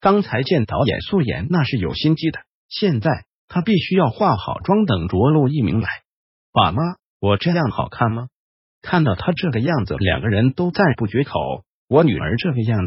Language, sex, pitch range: Chinese, male, 115-185 Hz